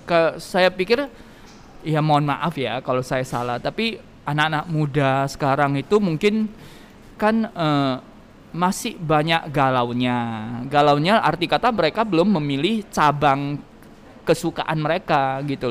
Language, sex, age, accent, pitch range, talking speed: Indonesian, male, 20-39, native, 135-180 Hz, 120 wpm